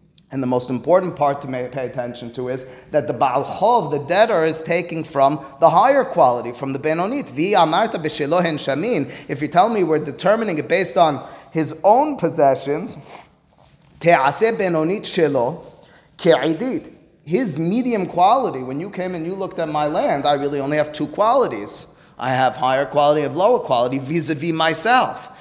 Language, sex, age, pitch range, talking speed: English, male, 30-49, 130-165 Hz, 150 wpm